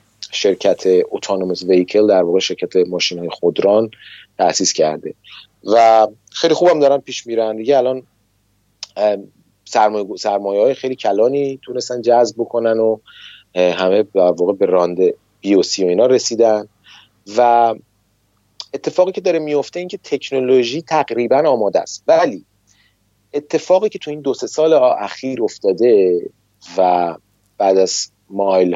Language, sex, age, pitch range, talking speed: Persian, male, 30-49, 100-130 Hz, 125 wpm